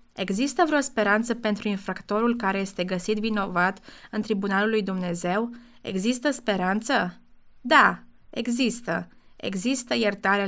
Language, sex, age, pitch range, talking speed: Romanian, female, 20-39, 195-250 Hz, 110 wpm